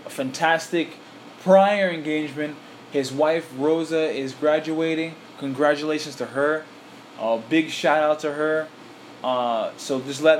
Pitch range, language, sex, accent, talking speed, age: 145-170 Hz, English, male, American, 125 wpm, 20-39